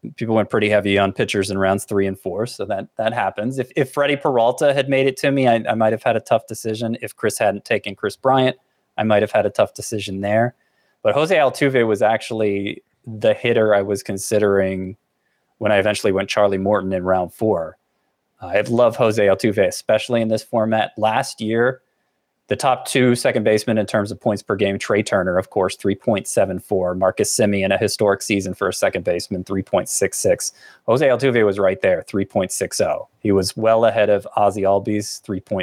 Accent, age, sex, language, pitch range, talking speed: American, 30-49, male, English, 100-115 Hz, 195 wpm